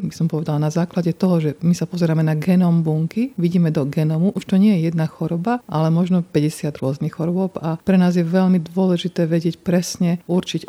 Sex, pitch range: female, 160-185 Hz